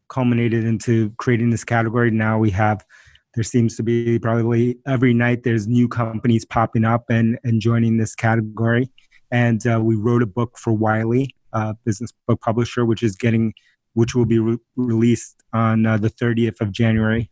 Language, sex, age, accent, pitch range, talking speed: English, male, 30-49, American, 110-120 Hz, 175 wpm